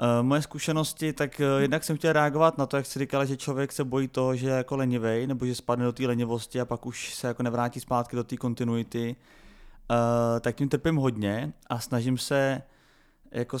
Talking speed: 210 wpm